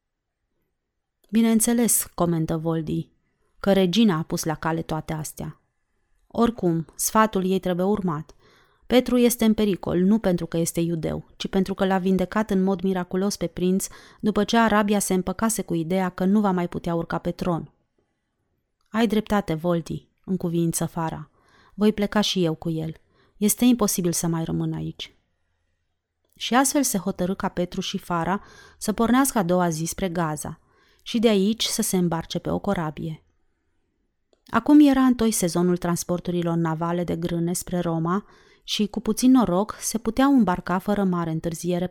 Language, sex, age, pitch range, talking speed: Romanian, female, 30-49, 165-210 Hz, 160 wpm